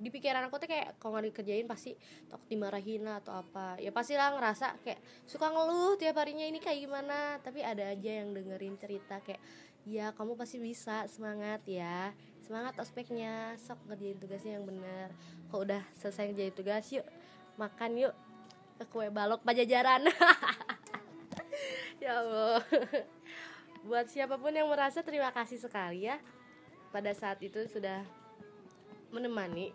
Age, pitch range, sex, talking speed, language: 20-39, 215-275 Hz, female, 150 wpm, Indonesian